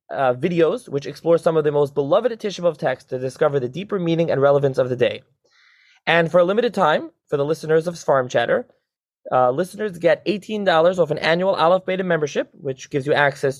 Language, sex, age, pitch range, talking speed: English, male, 20-39, 135-180 Hz, 205 wpm